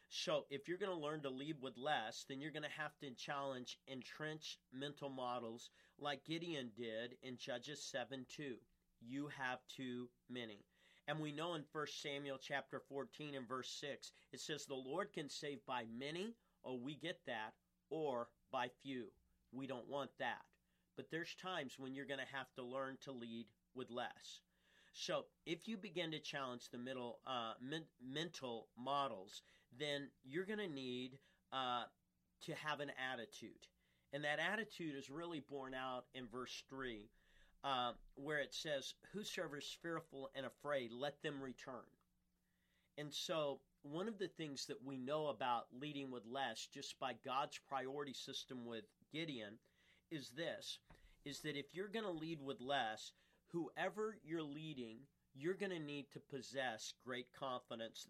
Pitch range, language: 125-150 Hz, English